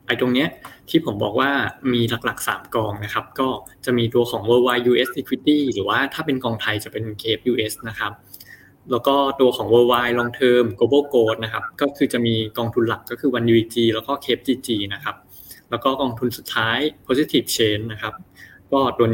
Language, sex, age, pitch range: Thai, male, 20-39, 110-130 Hz